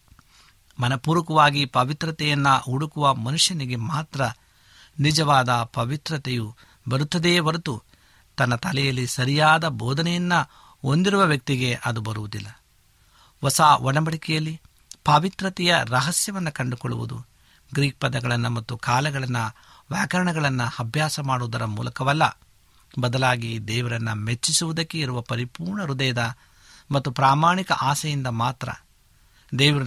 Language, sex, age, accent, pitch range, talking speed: Kannada, male, 60-79, native, 120-155 Hz, 80 wpm